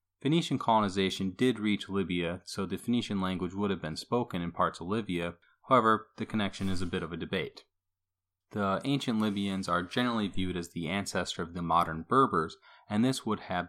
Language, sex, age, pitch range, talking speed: English, male, 30-49, 90-105 Hz, 190 wpm